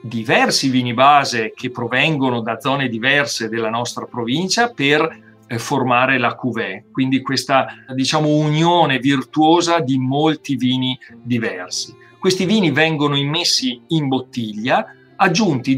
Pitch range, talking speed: 125-165 Hz, 120 wpm